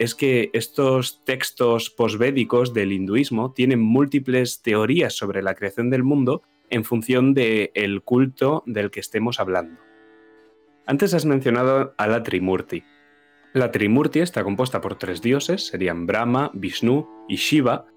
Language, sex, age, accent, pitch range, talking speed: Spanish, male, 20-39, Spanish, 105-135 Hz, 135 wpm